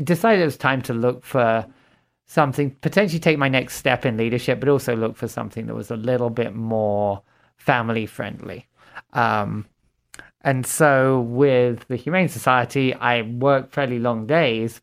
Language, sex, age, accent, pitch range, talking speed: English, male, 20-39, British, 110-130 Hz, 160 wpm